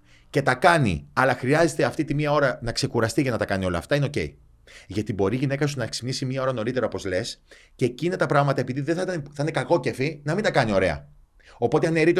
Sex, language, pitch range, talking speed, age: male, Greek, 95-150 Hz, 250 wpm, 30-49